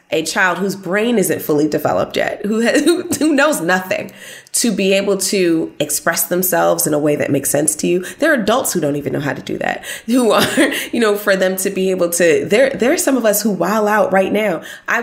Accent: American